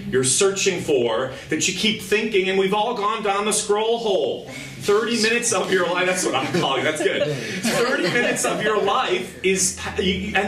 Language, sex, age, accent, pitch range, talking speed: English, male, 40-59, American, 135-205 Hz, 190 wpm